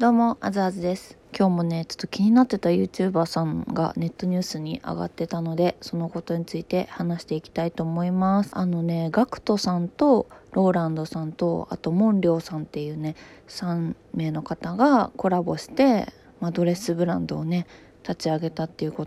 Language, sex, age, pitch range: Japanese, female, 20-39, 165-220 Hz